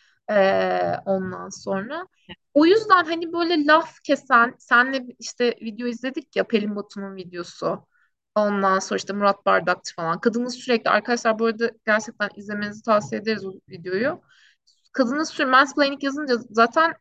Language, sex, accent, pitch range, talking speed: Turkish, female, native, 195-275 Hz, 140 wpm